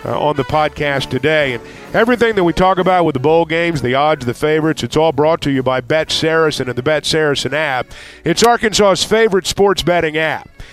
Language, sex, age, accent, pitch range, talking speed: English, male, 50-69, American, 155-190 Hz, 215 wpm